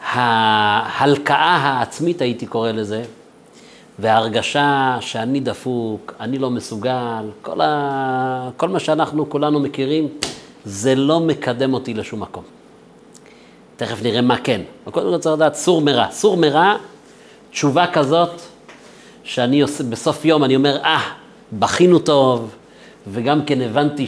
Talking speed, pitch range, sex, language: 125 wpm, 115-145 Hz, male, Hebrew